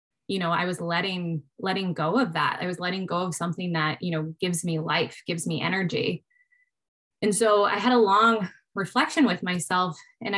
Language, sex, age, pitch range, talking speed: English, female, 20-39, 175-220 Hz, 195 wpm